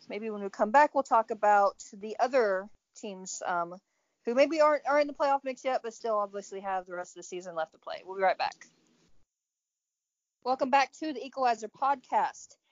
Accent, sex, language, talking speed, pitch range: American, female, English, 205 wpm, 190-245 Hz